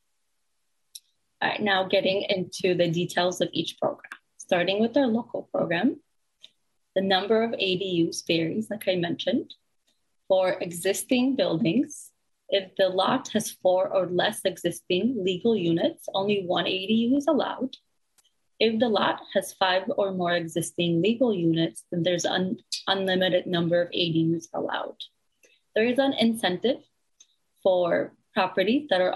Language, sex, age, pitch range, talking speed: English, female, 20-39, 175-225 Hz, 135 wpm